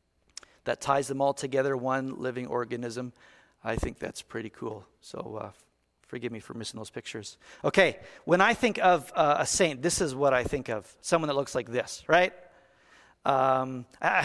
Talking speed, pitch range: 180 wpm, 125-150 Hz